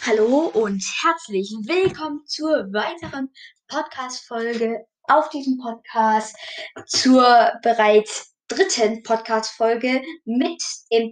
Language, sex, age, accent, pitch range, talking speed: German, female, 10-29, German, 225-285 Hz, 85 wpm